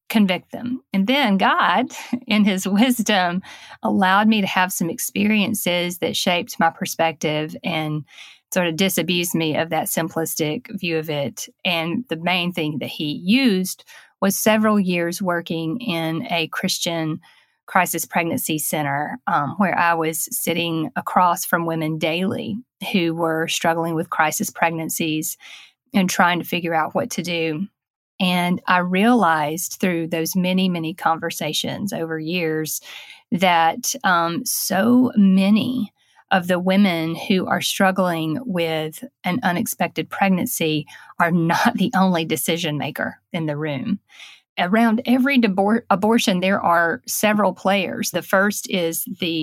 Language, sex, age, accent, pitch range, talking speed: English, female, 30-49, American, 165-210 Hz, 135 wpm